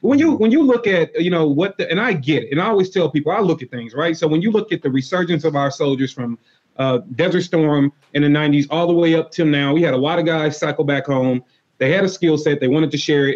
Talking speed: 295 wpm